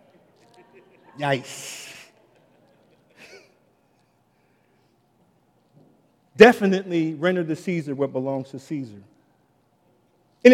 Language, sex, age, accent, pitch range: English, male, 50-69, American, 170-260 Hz